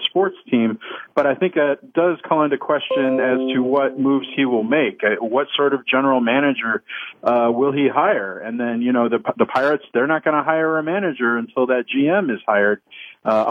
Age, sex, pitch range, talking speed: 40-59, male, 115-140 Hz, 205 wpm